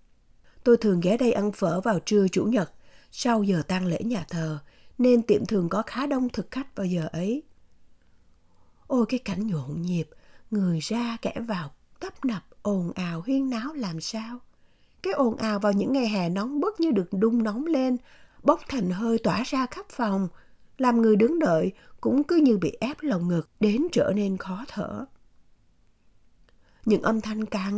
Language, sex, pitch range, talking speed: Vietnamese, female, 195-265 Hz, 185 wpm